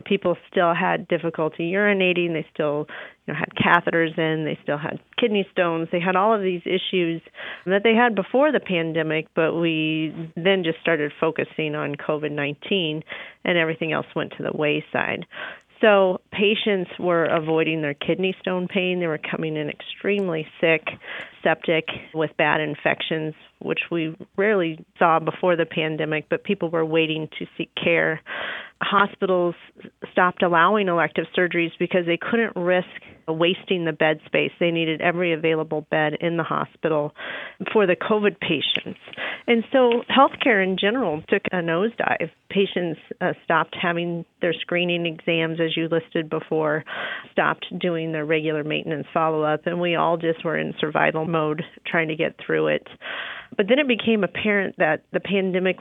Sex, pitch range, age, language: female, 160-185 Hz, 40-59, English